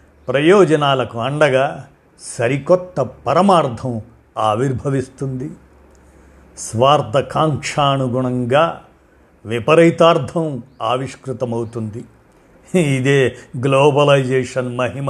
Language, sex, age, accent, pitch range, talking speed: Telugu, male, 50-69, native, 120-155 Hz, 45 wpm